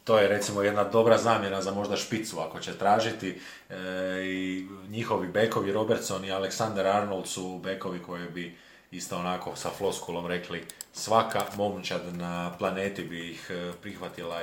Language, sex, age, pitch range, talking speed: Croatian, male, 30-49, 90-105 Hz, 150 wpm